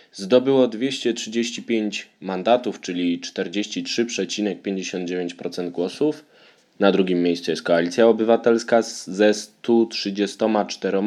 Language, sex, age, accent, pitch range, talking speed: Polish, male, 20-39, native, 95-110 Hz, 75 wpm